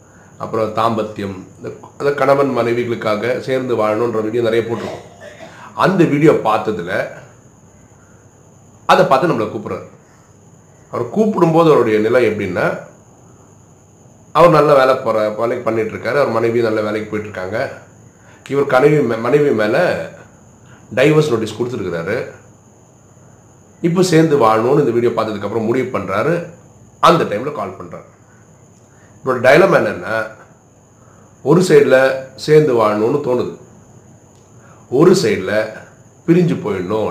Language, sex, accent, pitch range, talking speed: Tamil, male, native, 110-135 Hz, 105 wpm